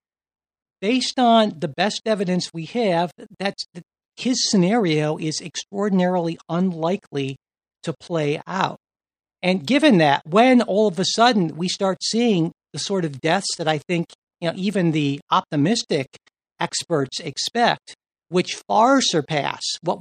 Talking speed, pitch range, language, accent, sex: 140 wpm, 155-200 Hz, English, American, male